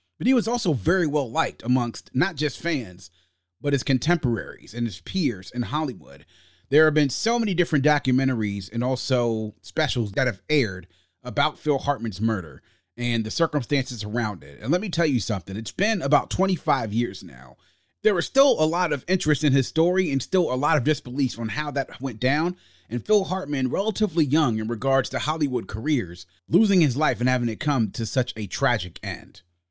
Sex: male